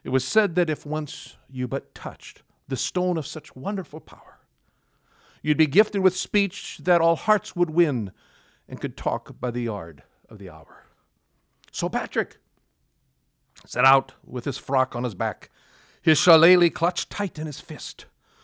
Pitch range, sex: 125-185 Hz, male